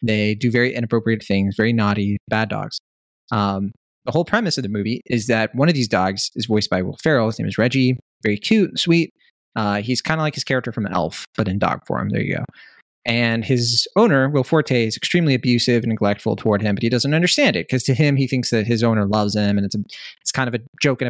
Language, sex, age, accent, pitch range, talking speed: English, male, 20-39, American, 105-135 Hz, 245 wpm